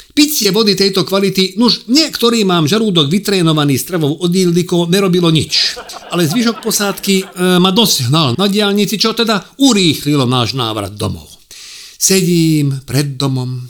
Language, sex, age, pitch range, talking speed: Czech, male, 50-69, 115-185 Hz, 135 wpm